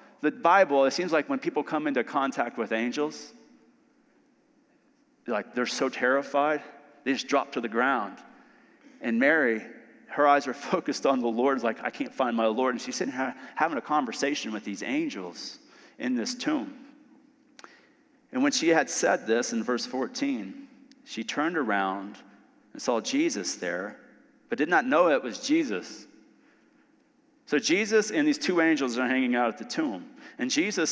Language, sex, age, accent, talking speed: English, male, 30-49, American, 170 wpm